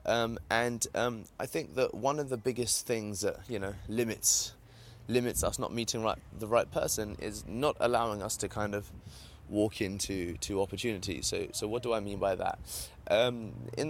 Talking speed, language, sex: 190 wpm, English, male